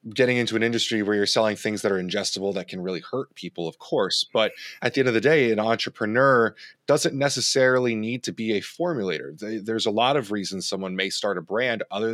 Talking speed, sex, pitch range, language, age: 225 wpm, male, 100-125 Hz, English, 20-39